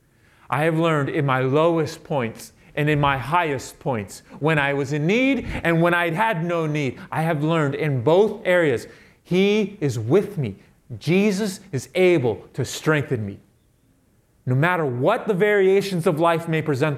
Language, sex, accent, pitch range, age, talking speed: English, male, American, 140-195 Hz, 30-49, 170 wpm